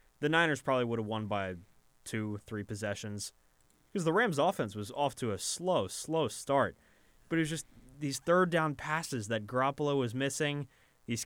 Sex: male